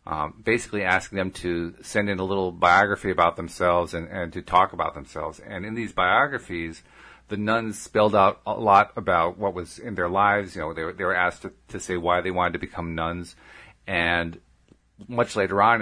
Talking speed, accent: 205 wpm, American